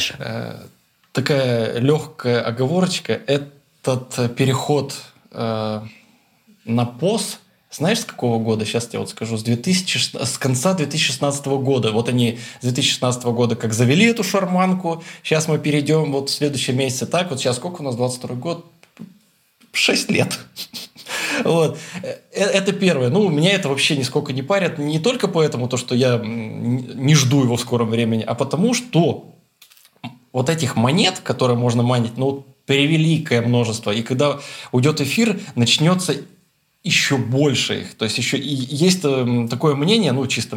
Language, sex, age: Russian, male, 20-39